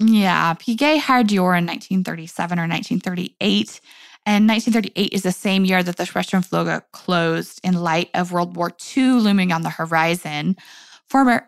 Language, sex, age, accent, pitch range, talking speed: English, female, 20-39, American, 175-220 Hz, 155 wpm